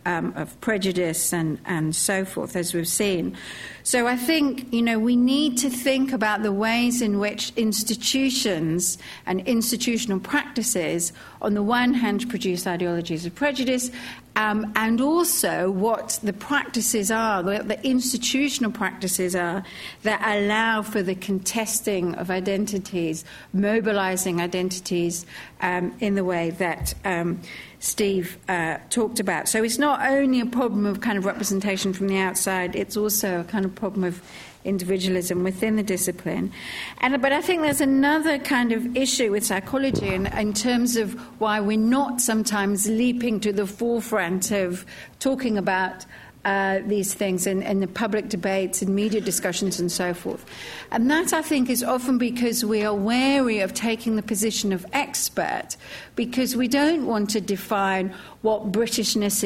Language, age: English, 60-79